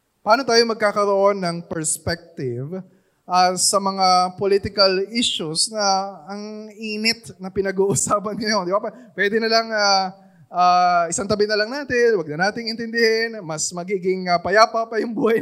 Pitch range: 160-210 Hz